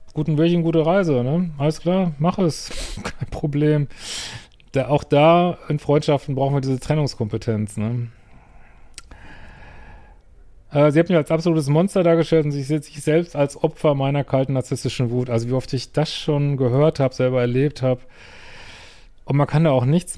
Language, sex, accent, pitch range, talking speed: German, male, German, 125-150 Hz, 165 wpm